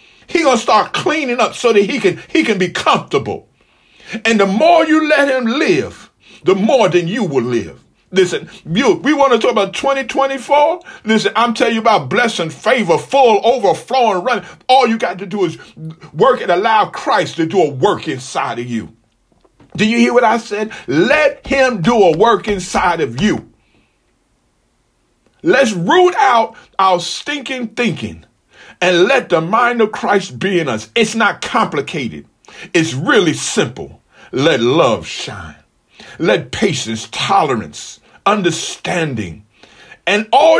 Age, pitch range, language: 50-69, 170-245 Hz, English